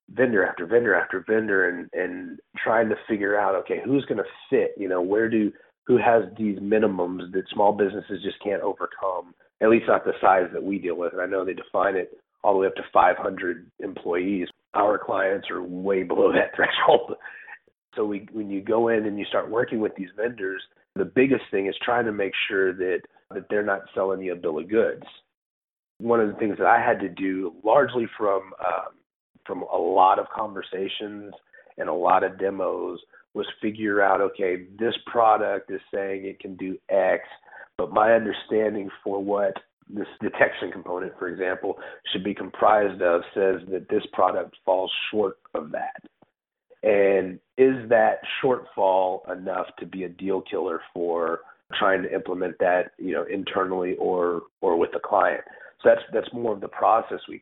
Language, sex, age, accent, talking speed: English, male, 30-49, American, 185 wpm